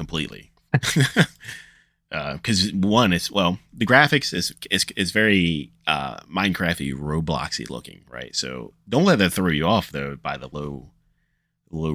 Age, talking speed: 30-49, 145 wpm